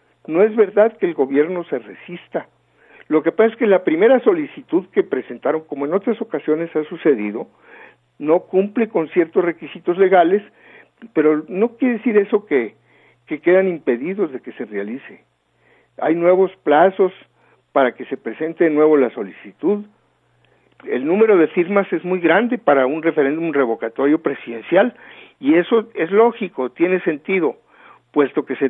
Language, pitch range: Spanish, 145-220 Hz